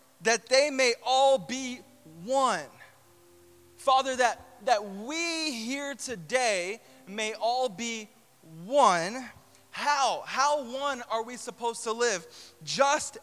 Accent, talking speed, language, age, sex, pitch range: American, 115 wpm, English, 20-39, male, 180-235 Hz